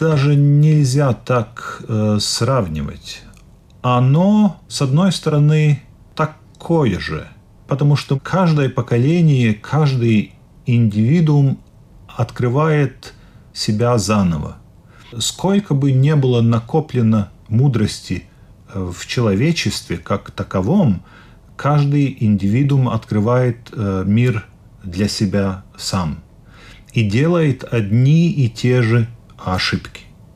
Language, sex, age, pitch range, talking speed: Russian, male, 40-59, 105-145 Hz, 90 wpm